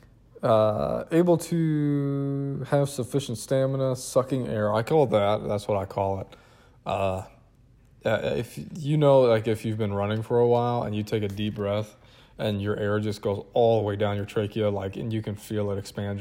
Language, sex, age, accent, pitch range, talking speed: English, male, 20-39, American, 105-125 Hz, 195 wpm